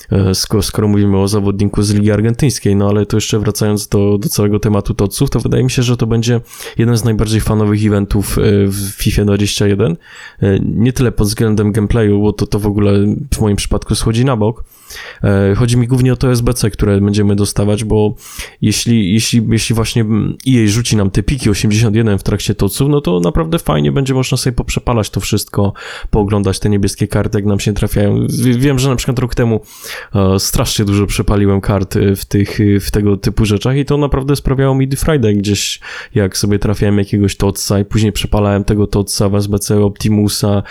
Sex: male